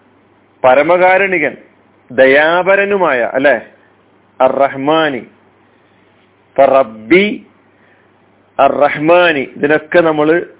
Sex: male